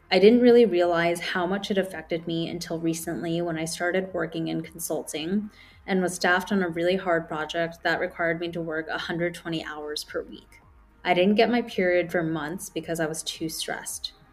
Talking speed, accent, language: 195 wpm, American, English